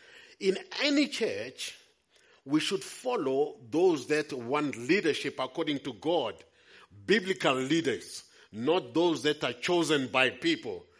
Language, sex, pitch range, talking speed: English, male, 135-230 Hz, 120 wpm